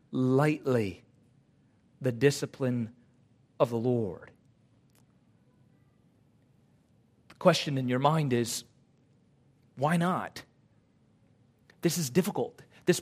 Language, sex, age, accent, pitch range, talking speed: English, male, 40-59, American, 115-150 Hz, 85 wpm